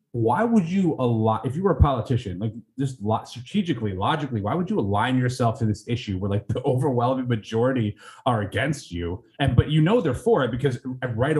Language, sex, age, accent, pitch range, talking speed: English, male, 30-49, American, 115-150 Hz, 200 wpm